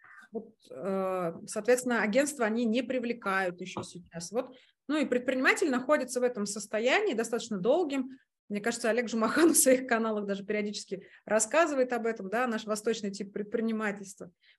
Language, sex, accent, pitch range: Russian, female, native, 200-250 Hz